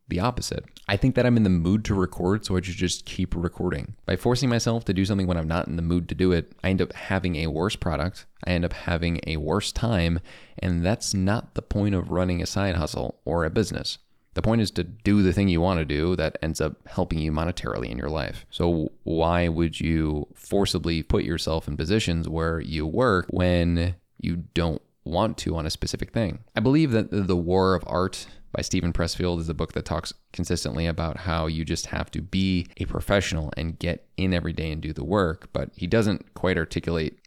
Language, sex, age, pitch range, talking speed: English, male, 20-39, 80-95 Hz, 225 wpm